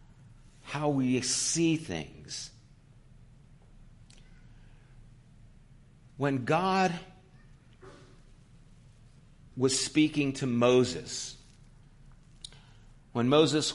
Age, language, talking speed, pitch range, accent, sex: 50-69, English, 50 wpm, 125-155 Hz, American, male